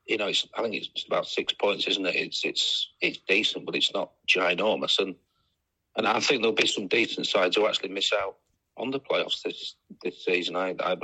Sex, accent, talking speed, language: male, British, 215 wpm, English